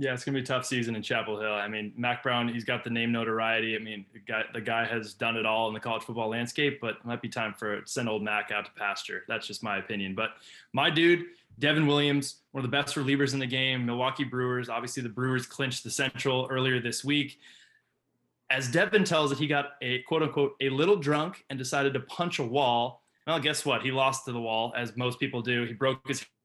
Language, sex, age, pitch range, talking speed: English, male, 20-39, 120-145 Hz, 245 wpm